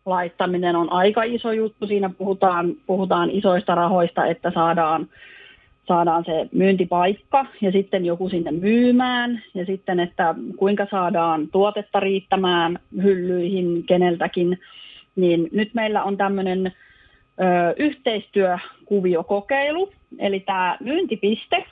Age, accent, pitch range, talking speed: 30-49, native, 180-220 Hz, 105 wpm